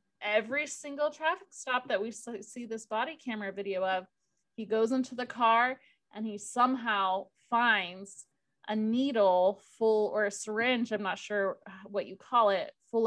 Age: 20-39